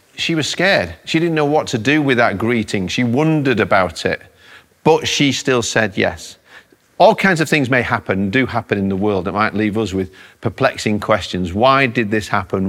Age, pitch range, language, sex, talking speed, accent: 40-59, 105-145 Hz, English, male, 205 wpm, British